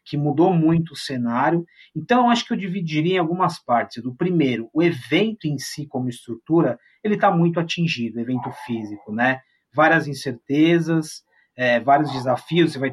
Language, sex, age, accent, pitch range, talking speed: Portuguese, male, 30-49, Brazilian, 125-165 Hz, 165 wpm